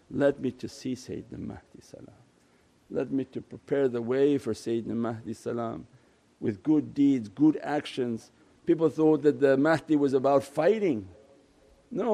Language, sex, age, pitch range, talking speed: English, male, 50-69, 135-190 Hz, 145 wpm